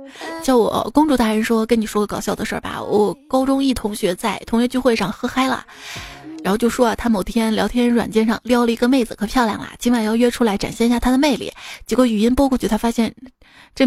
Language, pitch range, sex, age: Chinese, 215-260 Hz, female, 20-39